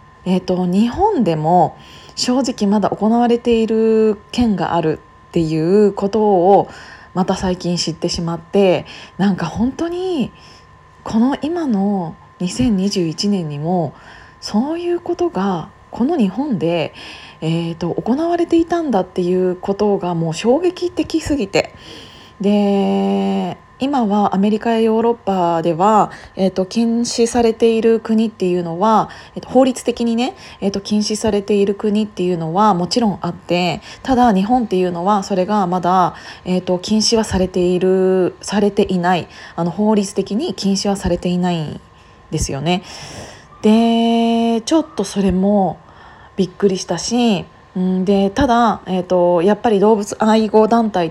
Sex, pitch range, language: female, 180-230 Hz, Japanese